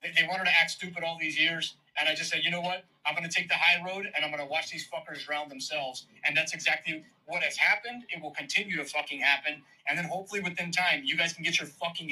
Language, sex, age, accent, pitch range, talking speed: English, male, 30-49, American, 150-180 Hz, 255 wpm